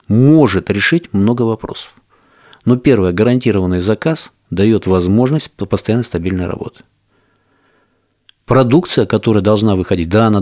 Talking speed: 110 wpm